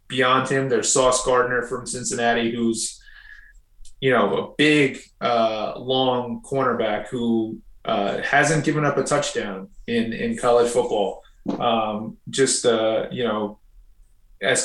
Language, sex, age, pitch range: English, male, 30-49, 115-130 Hz